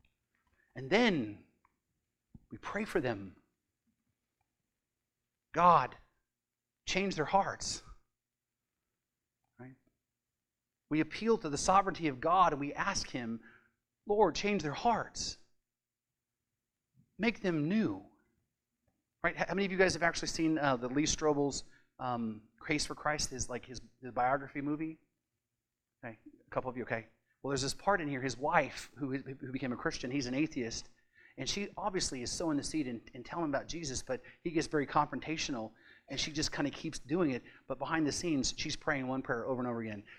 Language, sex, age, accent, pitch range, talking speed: English, male, 40-59, American, 135-200 Hz, 165 wpm